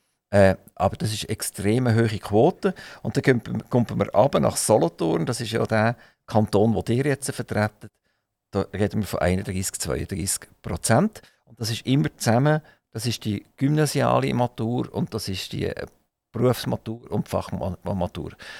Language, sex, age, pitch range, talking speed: German, male, 50-69, 105-130 Hz, 160 wpm